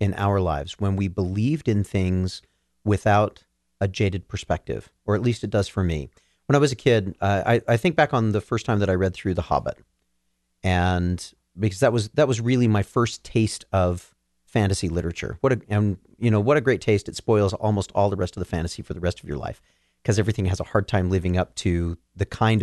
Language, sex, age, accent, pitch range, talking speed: English, male, 40-59, American, 90-115 Hz, 230 wpm